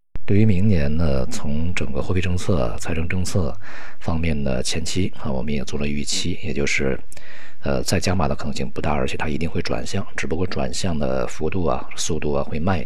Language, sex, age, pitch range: Chinese, male, 50-69, 70-95 Hz